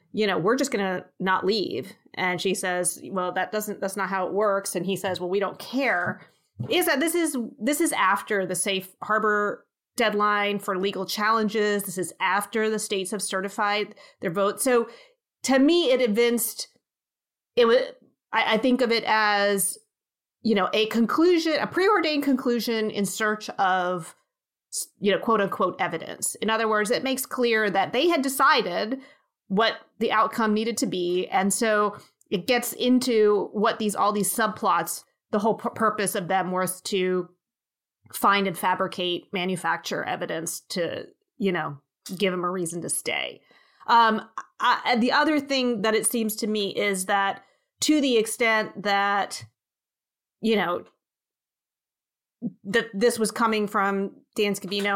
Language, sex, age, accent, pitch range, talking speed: English, female, 30-49, American, 190-235 Hz, 165 wpm